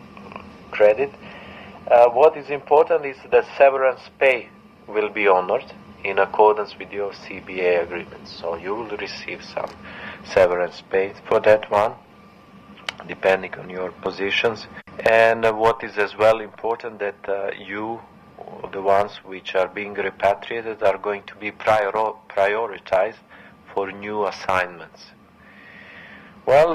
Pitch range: 95-110 Hz